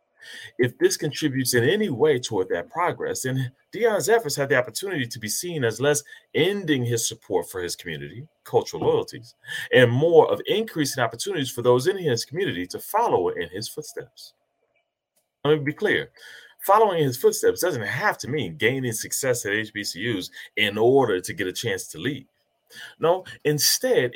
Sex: male